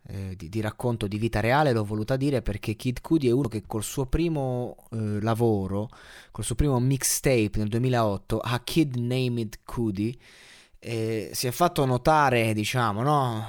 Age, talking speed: 20-39, 165 wpm